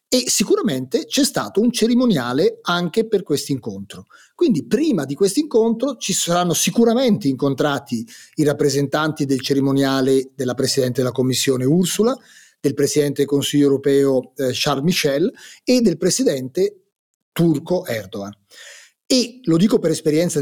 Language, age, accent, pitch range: Italian, 30-49, native, 140-215 Hz